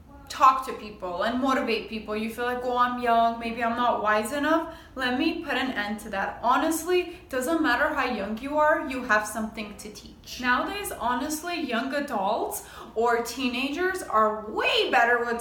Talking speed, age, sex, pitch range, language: 180 wpm, 20-39, female, 220-295 Hz, English